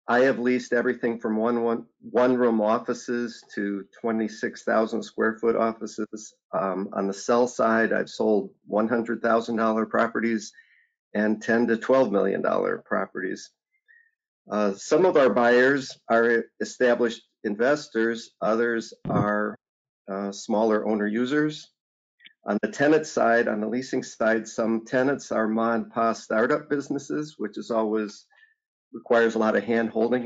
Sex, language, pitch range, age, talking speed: male, English, 110-125 Hz, 50-69, 135 wpm